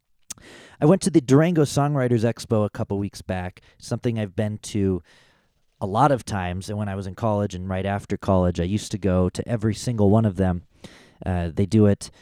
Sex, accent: male, American